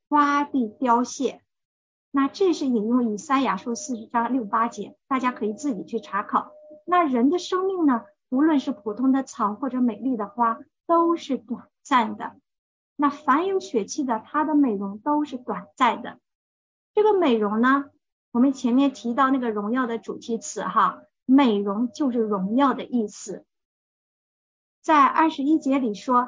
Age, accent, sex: 50-69, native, female